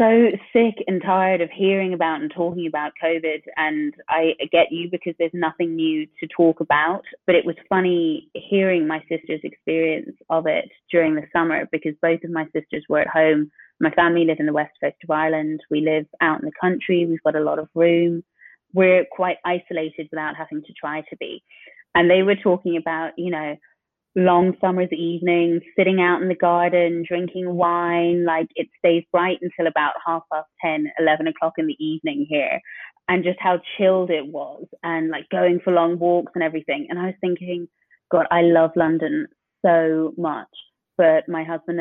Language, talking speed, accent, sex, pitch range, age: English, 190 wpm, British, female, 160-180 Hz, 20-39